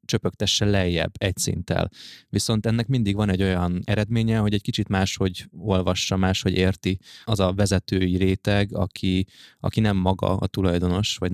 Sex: male